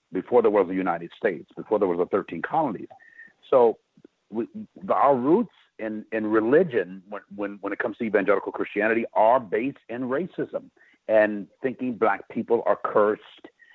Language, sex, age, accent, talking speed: English, male, 60-79, American, 165 wpm